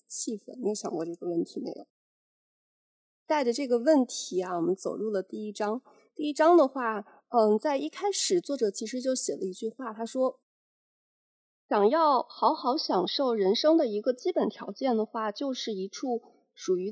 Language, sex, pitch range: Chinese, female, 210-310 Hz